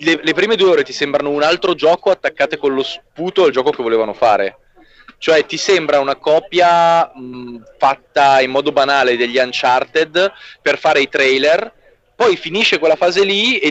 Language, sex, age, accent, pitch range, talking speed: Italian, male, 20-39, native, 125-180 Hz, 175 wpm